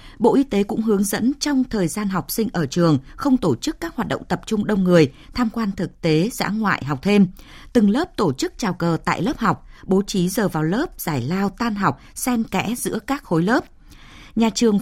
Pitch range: 170-240 Hz